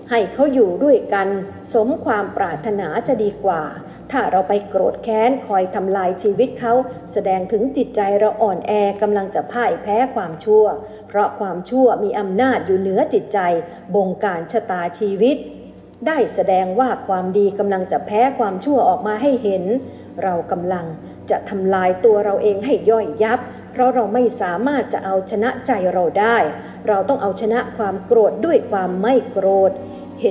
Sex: female